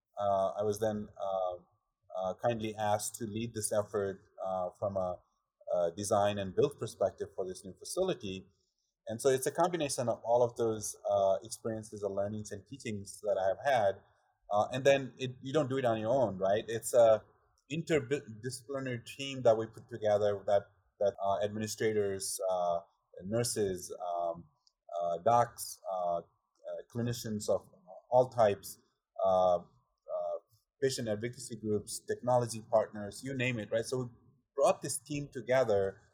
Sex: male